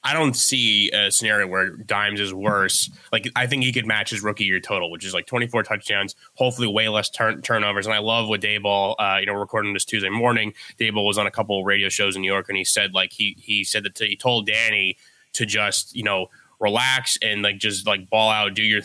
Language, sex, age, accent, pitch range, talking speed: English, male, 20-39, American, 105-120 Hz, 245 wpm